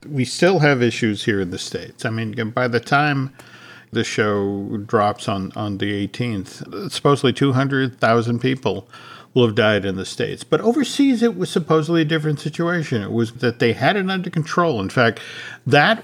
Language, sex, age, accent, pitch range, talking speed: English, male, 50-69, American, 115-160 Hz, 180 wpm